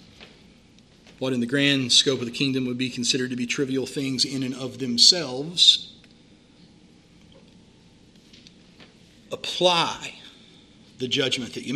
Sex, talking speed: male, 120 wpm